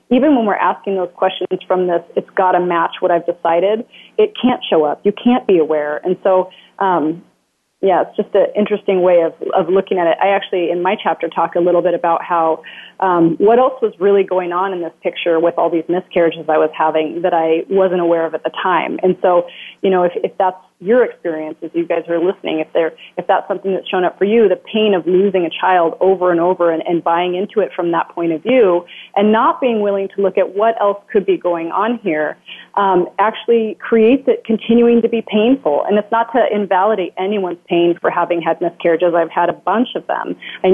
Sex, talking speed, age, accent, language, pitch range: female, 230 wpm, 30-49, American, English, 175-210 Hz